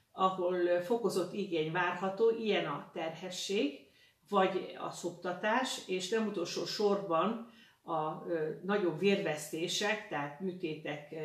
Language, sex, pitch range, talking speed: Hungarian, female, 160-195 Hz, 115 wpm